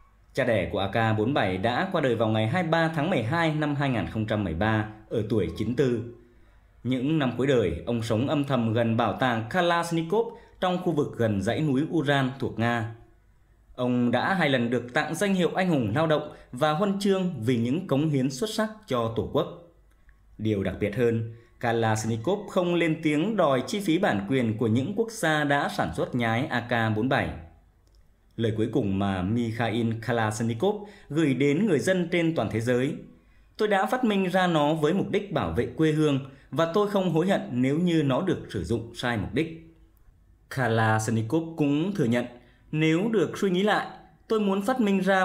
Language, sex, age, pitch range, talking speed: English, male, 20-39, 110-165 Hz, 185 wpm